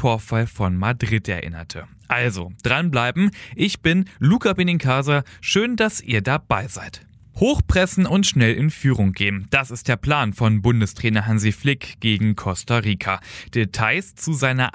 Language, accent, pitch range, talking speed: German, German, 105-145 Hz, 140 wpm